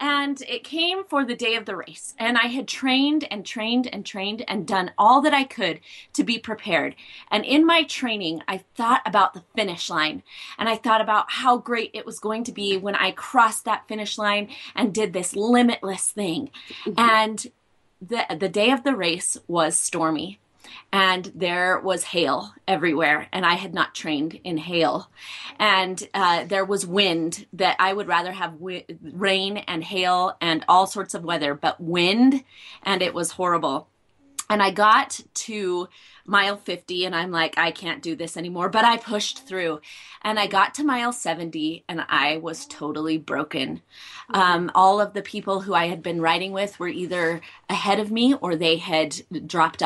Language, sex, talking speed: English, female, 185 wpm